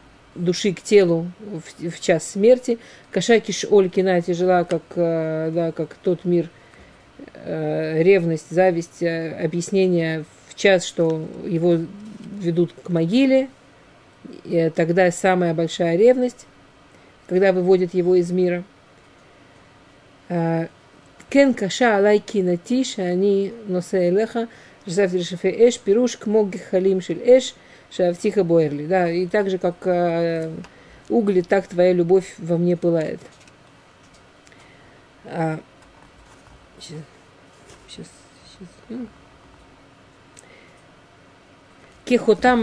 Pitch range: 170-205 Hz